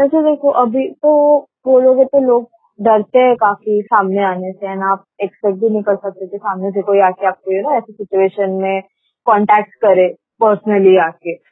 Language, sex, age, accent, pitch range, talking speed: Hindi, female, 20-39, native, 195-235 Hz, 170 wpm